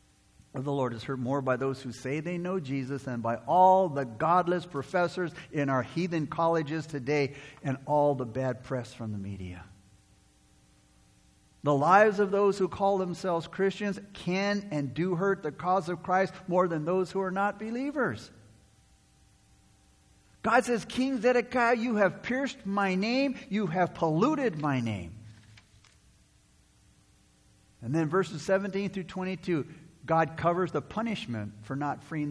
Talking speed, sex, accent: 150 wpm, male, American